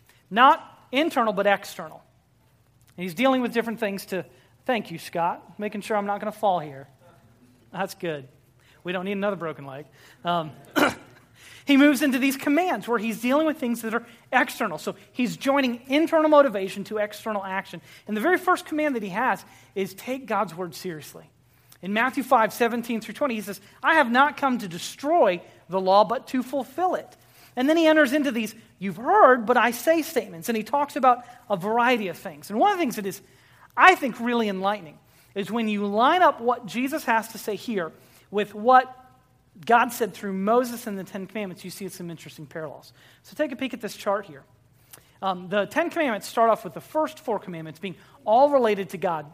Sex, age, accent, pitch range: male, 30-49, American, 175-250 Hz